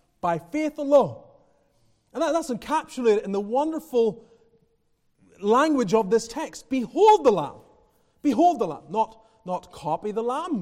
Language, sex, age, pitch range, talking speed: English, male, 30-49, 175-290 Hz, 135 wpm